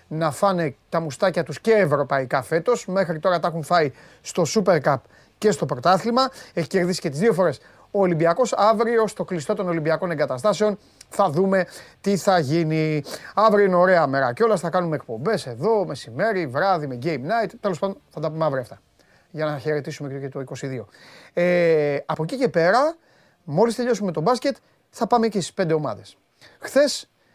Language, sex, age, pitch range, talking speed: Greek, male, 30-49, 165-225 Hz, 180 wpm